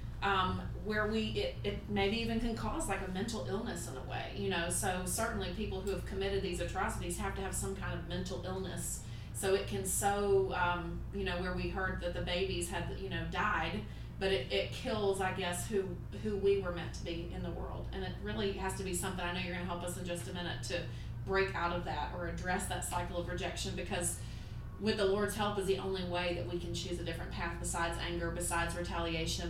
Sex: female